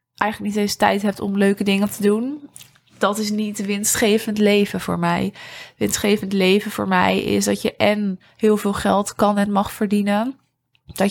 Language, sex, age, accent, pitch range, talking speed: Dutch, female, 20-39, Dutch, 195-220 Hz, 180 wpm